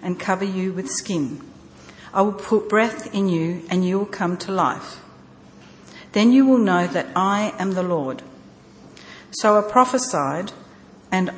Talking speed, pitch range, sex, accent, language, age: 160 wpm, 170-205 Hz, female, Australian, English, 50-69